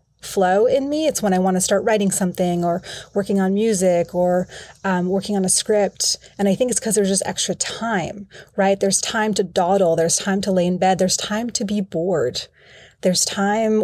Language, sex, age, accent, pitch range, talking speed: English, female, 30-49, American, 185-210 Hz, 210 wpm